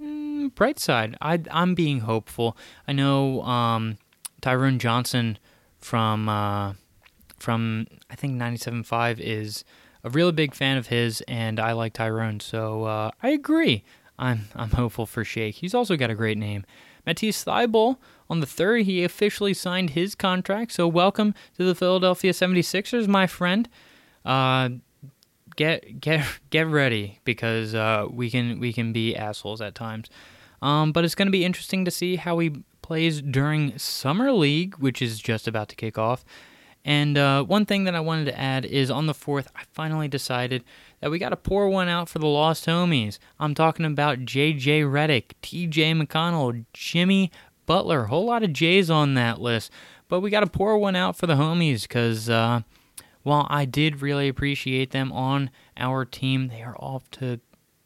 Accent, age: American, 20-39